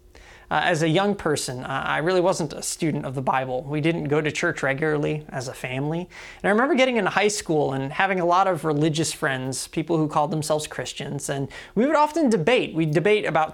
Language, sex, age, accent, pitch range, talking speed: English, male, 30-49, American, 150-210 Hz, 220 wpm